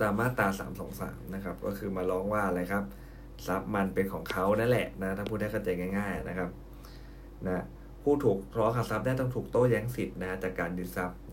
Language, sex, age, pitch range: Thai, male, 20-39, 95-110 Hz